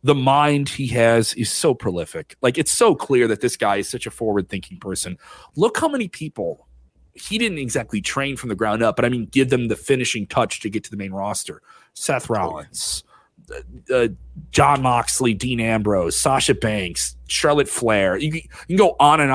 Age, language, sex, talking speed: 30-49, English, male, 190 wpm